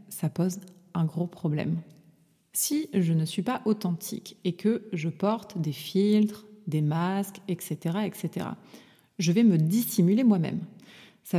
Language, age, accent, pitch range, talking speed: French, 30-49, French, 170-210 Hz, 140 wpm